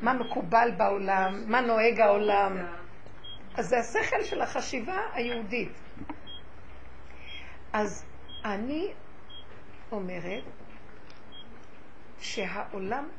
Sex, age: female, 60-79